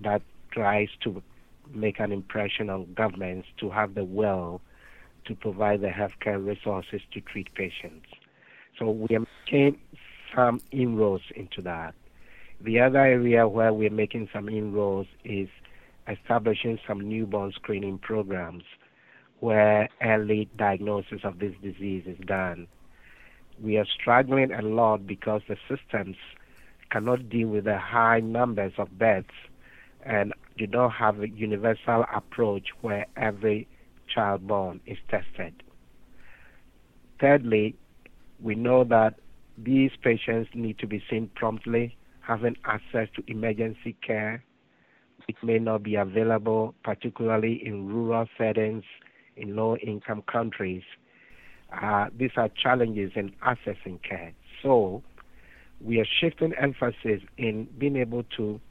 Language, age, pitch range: English, 60-79, 100-115 Hz